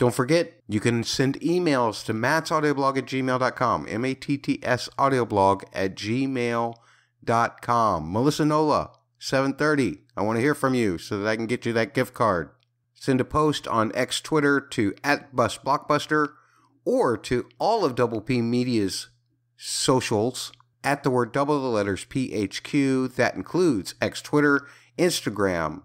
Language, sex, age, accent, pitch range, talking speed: English, male, 50-69, American, 115-150 Hz, 140 wpm